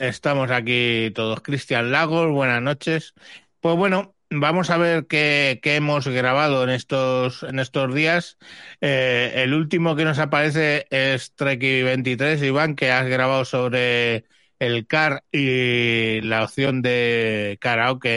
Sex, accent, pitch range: male, Spanish, 120-140 Hz